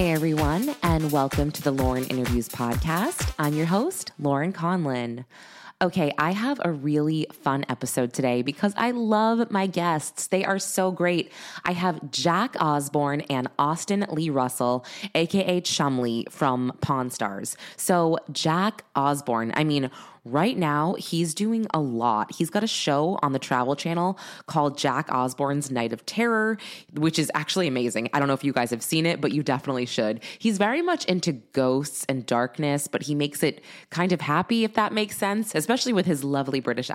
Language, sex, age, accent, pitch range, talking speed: English, female, 20-39, American, 135-185 Hz, 175 wpm